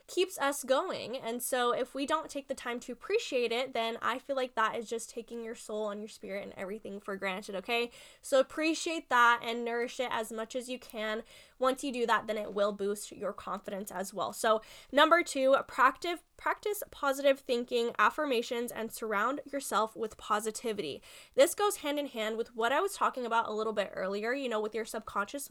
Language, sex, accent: English, female, American